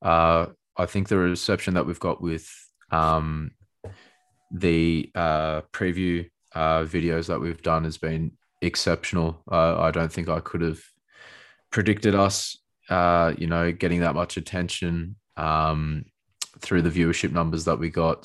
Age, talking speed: 20-39, 150 wpm